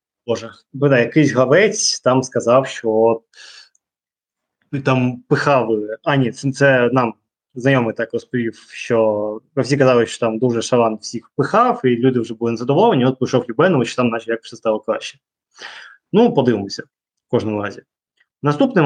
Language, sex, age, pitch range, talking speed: Ukrainian, male, 20-39, 120-140 Hz, 140 wpm